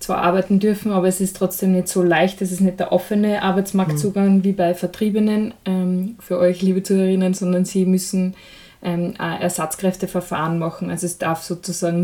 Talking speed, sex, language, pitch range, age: 170 wpm, female, German, 175-195 Hz, 20-39